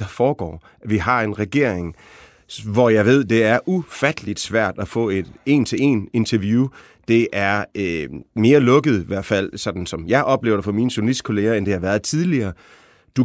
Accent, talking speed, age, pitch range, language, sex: native, 180 wpm, 30-49, 100-130 Hz, Danish, male